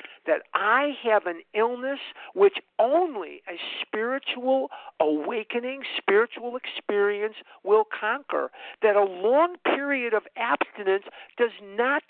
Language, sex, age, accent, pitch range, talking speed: English, male, 50-69, American, 205-335 Hz, 110 wpm